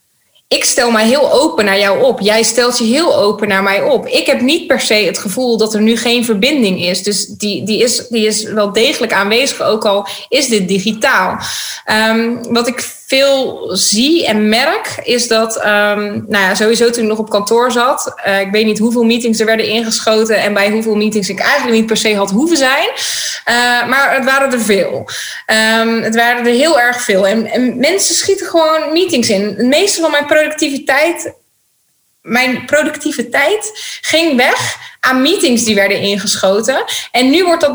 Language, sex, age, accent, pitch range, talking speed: Dutch, female, 20-39, Dutch, 220-270 Hz, 190 wpm